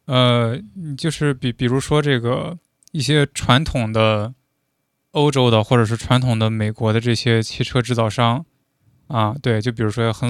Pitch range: 110-135 Hz